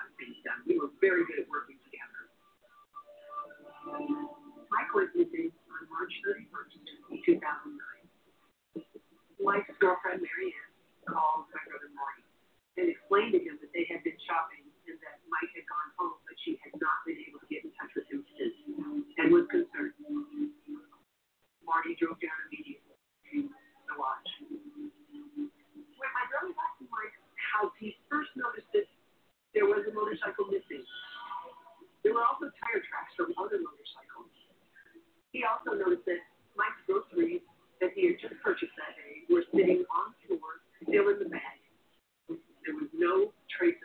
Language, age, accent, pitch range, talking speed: English, 40-59, American, 295-370 Hz, 145 wpm